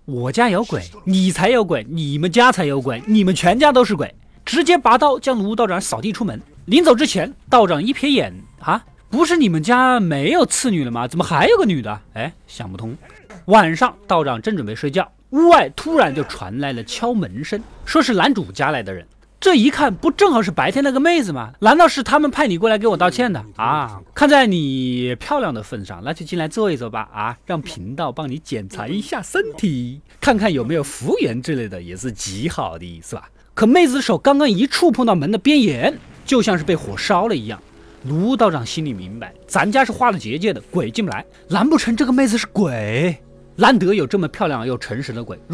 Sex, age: male, 20-39